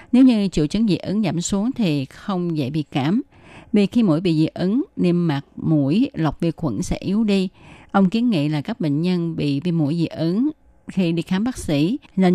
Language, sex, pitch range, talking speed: Vietnamese, female, 155-195 Hz, 225 wpm